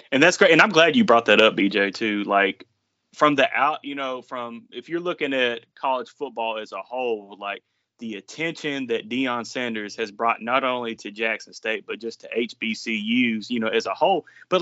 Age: 30-49